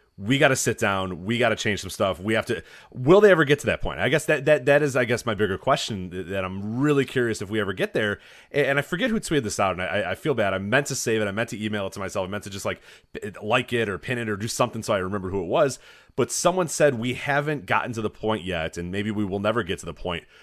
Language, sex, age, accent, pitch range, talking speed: English, male, 30-49, American, 100-140 Hz, 305 wpm